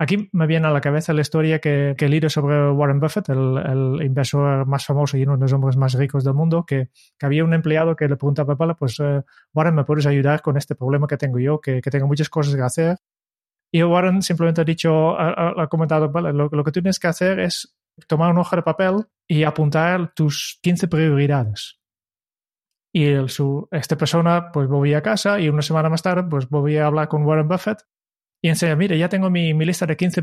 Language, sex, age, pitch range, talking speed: Spanish, male, 20-39, 145-175 Hz, 225 wpm